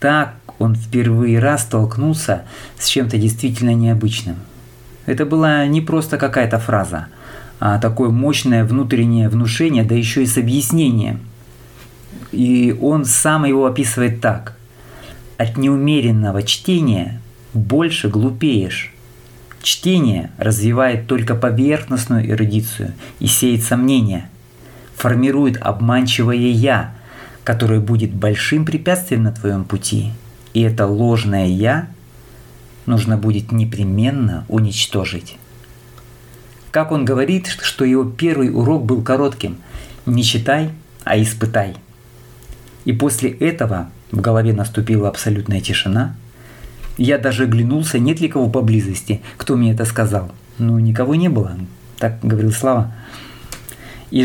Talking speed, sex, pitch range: 115 wpm, male, 110-130 Hz